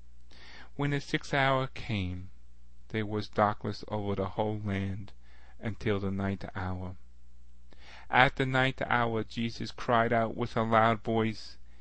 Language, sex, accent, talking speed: English, male, American, 135 wpm